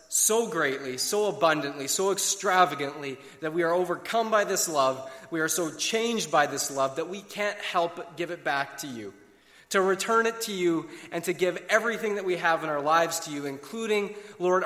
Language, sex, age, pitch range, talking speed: English, male, 30-49, 135-185 Hz, 200 wpm